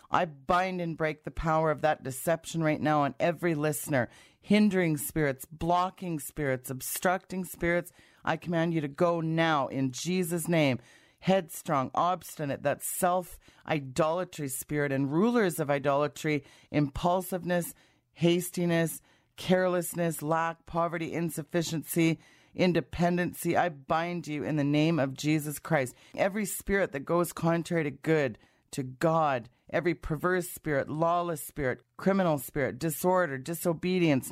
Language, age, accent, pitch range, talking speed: English, 40-59, American, 145-175 Hz, 130 wpm